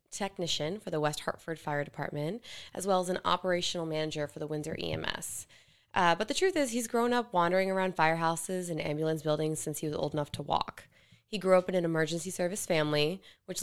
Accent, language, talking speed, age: American, English, 205 wpm, 20-39